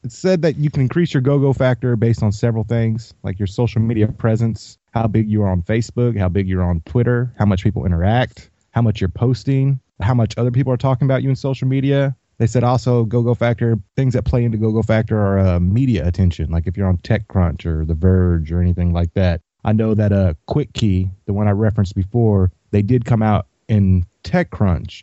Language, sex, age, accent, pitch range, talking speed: English, male, 30-49, American, 95-125 Hz, 225 wpm